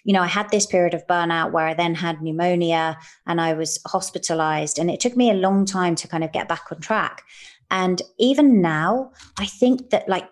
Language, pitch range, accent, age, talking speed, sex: English, 170-210 Hz, British, 30-49, 220 wpm, female